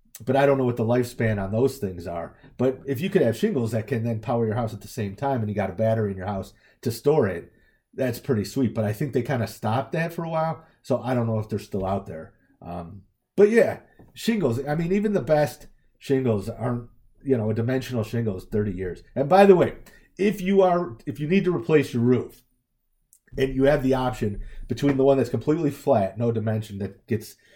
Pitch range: 110-140 Hz